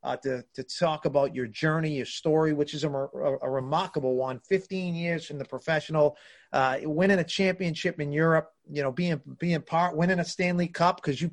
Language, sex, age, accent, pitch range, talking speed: English, male, 30-49, American, 135-170 Hz, 200 wpm